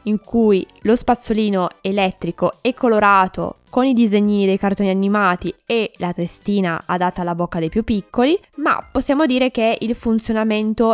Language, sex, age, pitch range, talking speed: Italian, female, 20-39, 185-235 Hz, 155 wpm